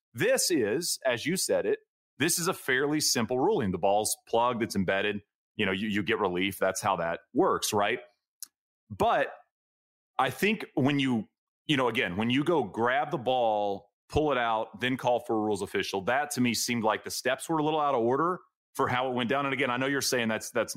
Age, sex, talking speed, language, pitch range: 30-49, male, 220 wpm, English, 120-150 Hz